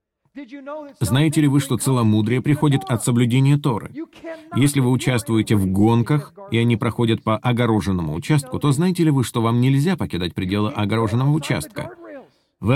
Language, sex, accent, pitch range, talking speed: Russian, male, native, 105-145 Hz, 150 wpm